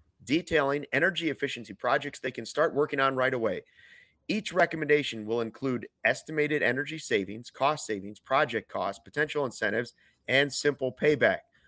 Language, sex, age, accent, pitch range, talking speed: English, male, 30-49, American, 110-145 Hz, 140 wpm